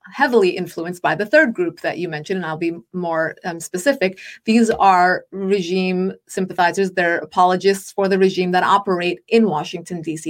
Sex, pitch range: female, 180-210 Hz